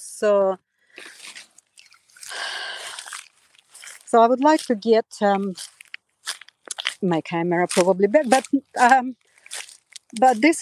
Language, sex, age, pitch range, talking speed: English, female, 50-69, 185-235 Hz, 95 wpm